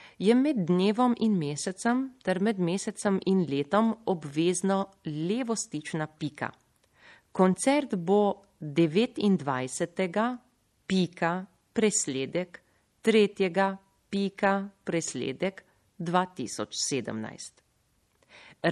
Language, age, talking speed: Italian, 40-59, 70 wpm